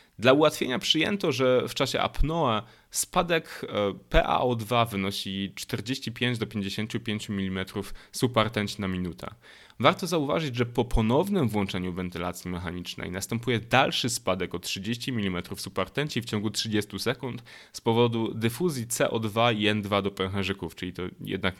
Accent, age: native, 20-39